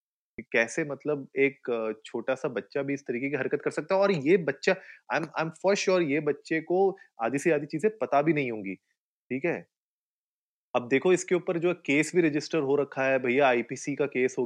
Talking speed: 210 wpm